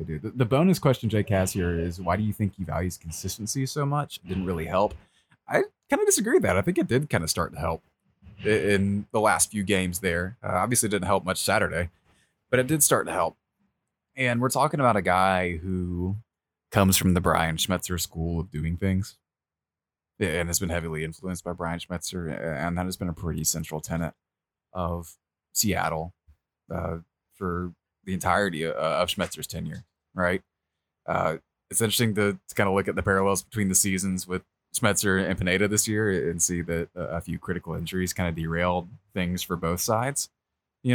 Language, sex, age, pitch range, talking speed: English, male, 20-39, 85-105 Hz, 190 wpm